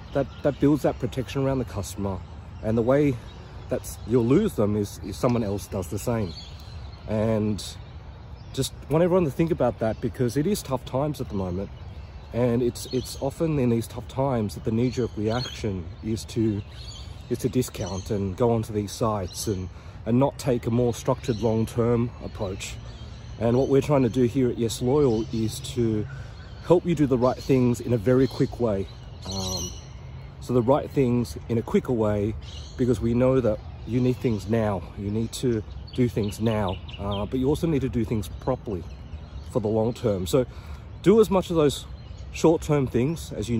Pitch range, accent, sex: 100-125 Hz, Australian, male